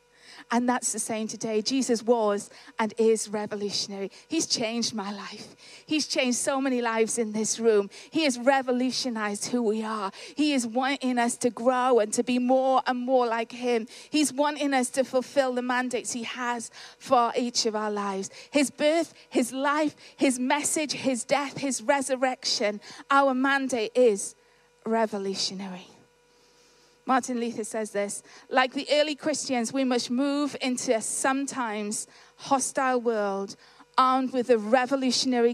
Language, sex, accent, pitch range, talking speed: English, female, British, 220-265 Hz, 150 wpm